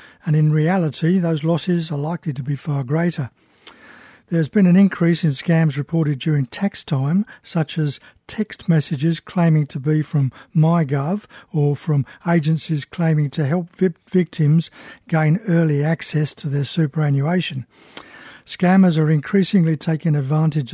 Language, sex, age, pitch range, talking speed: English, male, 60-79, 145-170 Hz, 140 wpm